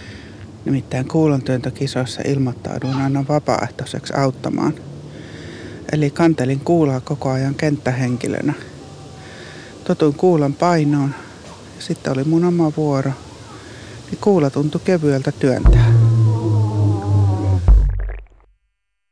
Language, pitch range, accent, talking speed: Finnish, 120-150 Hz, native, 85 wpm